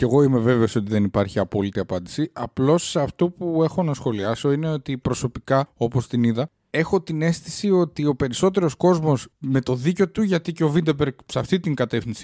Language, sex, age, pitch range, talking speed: Greek, male, 20-39, 115-165 Hz, 195 wpm